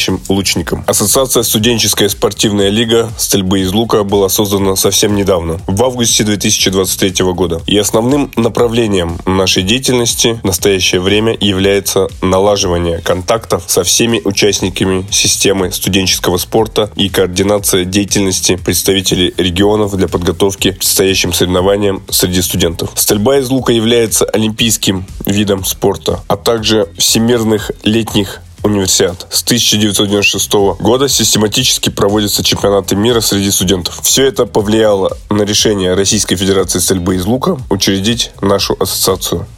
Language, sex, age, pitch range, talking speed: Russian, male, 20-39, 95-115 Hz, 120 wpm